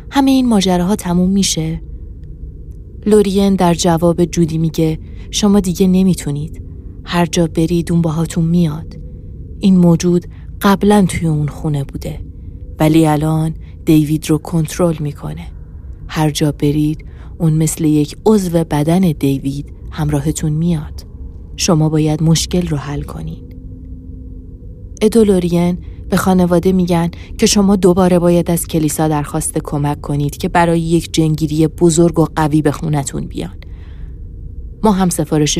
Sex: female